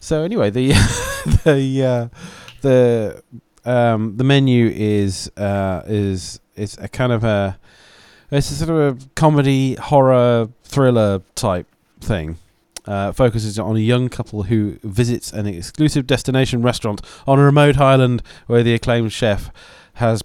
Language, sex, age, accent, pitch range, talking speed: English, male, 30-49, British, 100-130 Hz, 140 wpm